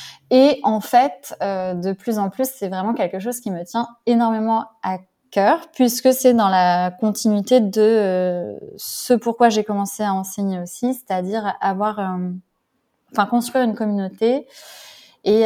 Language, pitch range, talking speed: French, 190-225 Hz, 155 wpm